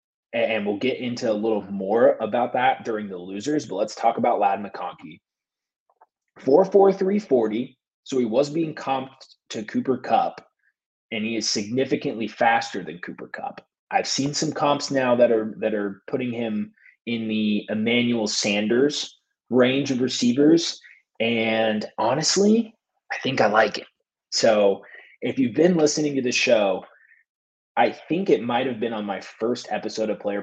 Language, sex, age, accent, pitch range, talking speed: English, male, 30-49, American, 100-135 Hz, 160 wpm